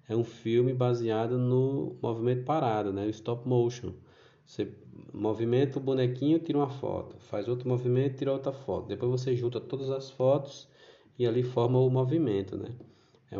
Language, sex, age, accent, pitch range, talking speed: Portuguese, male, 20-39, Brazilian, 105-130 Hz, 165 wpm